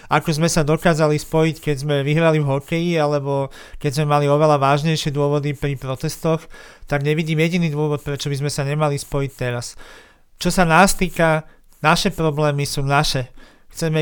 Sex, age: male, 40-59